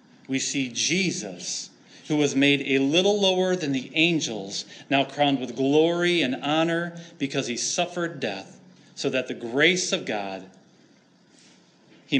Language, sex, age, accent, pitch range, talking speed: English, male, 30-49, American, 125-195 Hz, 145 wpm